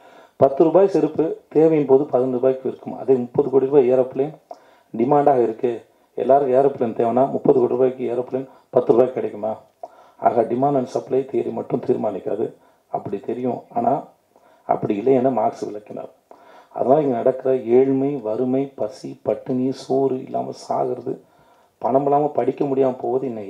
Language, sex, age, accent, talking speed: Tamil, male, 40-59, native, 150 wpm